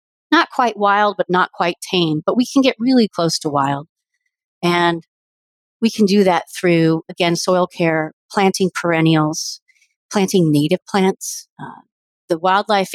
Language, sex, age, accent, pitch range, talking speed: English, female, 40-59, American, 165-200 Hz, 150 wpm